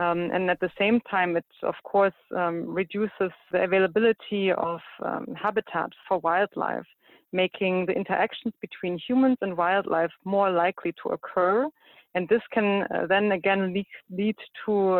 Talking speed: 145 wpm